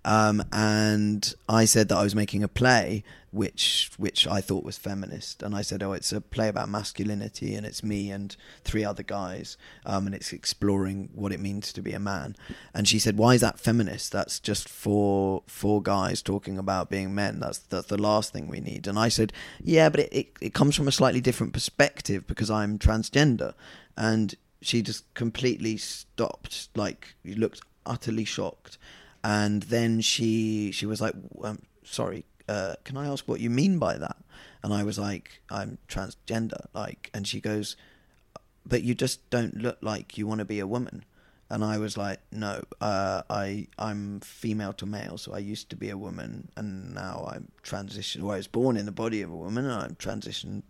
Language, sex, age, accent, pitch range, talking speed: English, male, 20-39, British, 100-115 Hz, 195 wpm